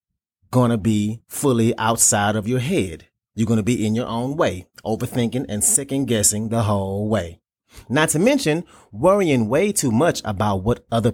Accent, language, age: American, English, 30-49